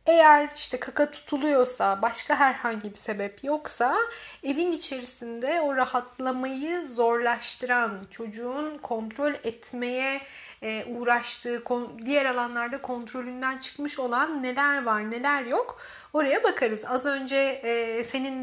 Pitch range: 240-310 Hz